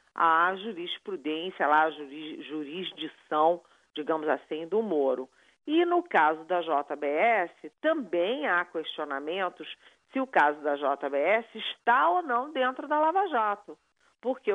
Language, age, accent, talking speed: Portuguese, 40-59, Brazilian, 125 wpm